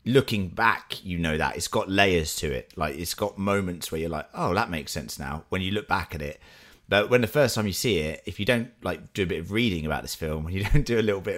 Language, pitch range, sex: English, 80-100 Hz, male